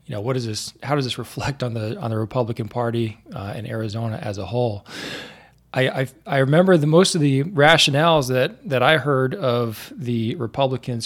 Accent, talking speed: American, 200 wpm